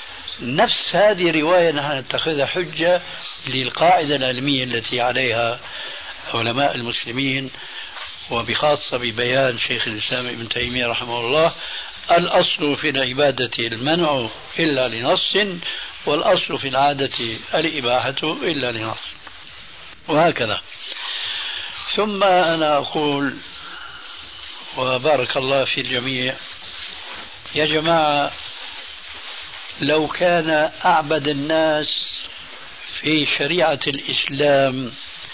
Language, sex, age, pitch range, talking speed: Arabic, male, 60-79, 125-155 Hz, 85 wpm